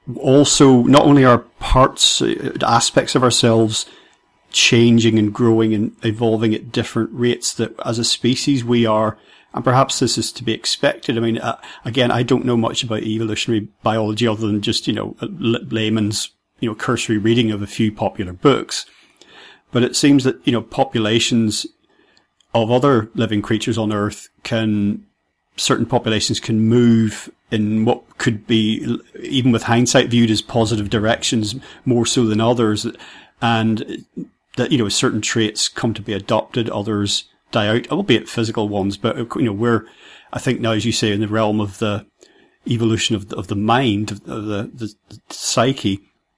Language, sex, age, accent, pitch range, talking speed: English, male, 40-59, British, 110-120 Hz, 165 wpm